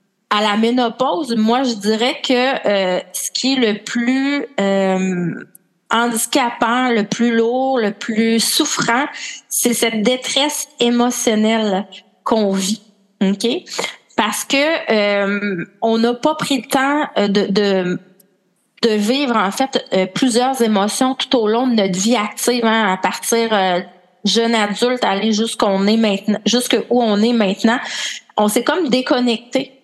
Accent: Canadian